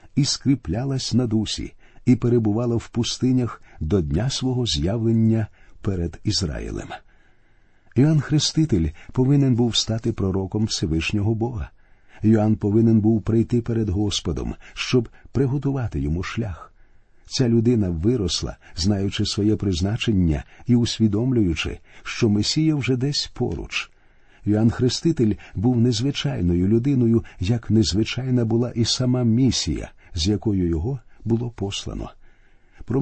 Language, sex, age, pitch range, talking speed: Ukrainian, male, 50-69, 95-120 Hz, 115 wpm